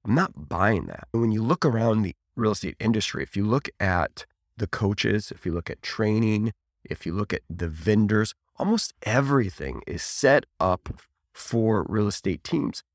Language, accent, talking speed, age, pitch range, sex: English, American, 175 wpm, 30-49, 85-120 Hz, male